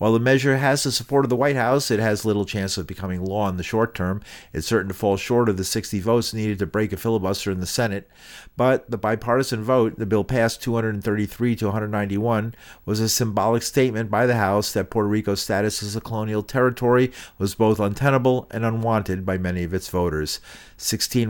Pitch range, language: 100-120 Hz, English